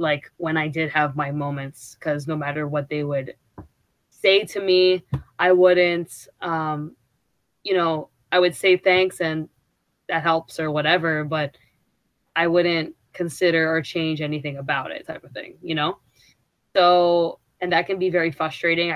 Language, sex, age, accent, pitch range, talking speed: English, female, 20-39, American, 150-175 Hz, 160 wpm